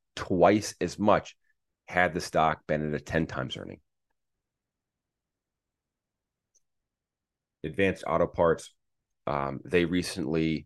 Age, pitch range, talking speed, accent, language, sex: 30-49, 75-90 Hz, 100 wpm, American, English, male